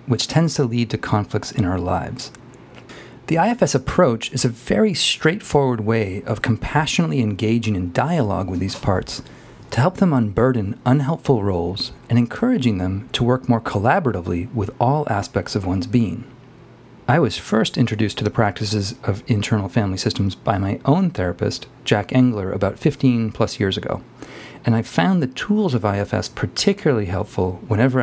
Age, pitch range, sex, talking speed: 40-59, 105-135 Hz, male, 165 wpm